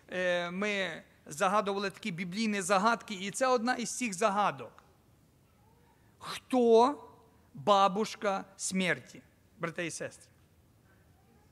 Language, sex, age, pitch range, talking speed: Ukrainian, male, 50-69, 200-290 Hz, 90 wpm